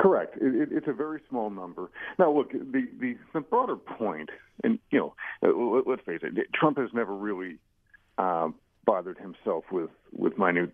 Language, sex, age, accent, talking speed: English, male, 50-69, American, 180 wpm